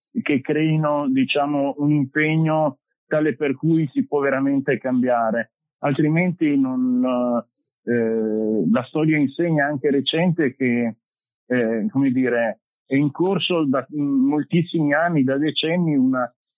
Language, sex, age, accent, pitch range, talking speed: Italian, male, 50-69, native, 125-155 Hz, 120 wpm